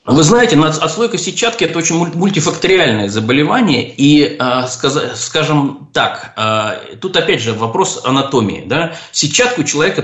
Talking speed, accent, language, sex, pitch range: 135 wpm, native, Russian, male, 115-175 Hz